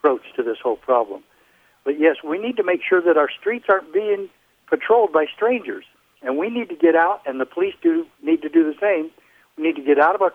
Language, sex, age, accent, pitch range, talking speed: English, male, 60-79, American, 140-195 Hz, 245 wpm